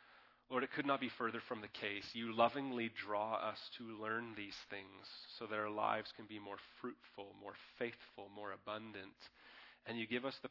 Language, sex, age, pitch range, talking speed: English, male, 30-49, 115-175 Hz, 195 wpm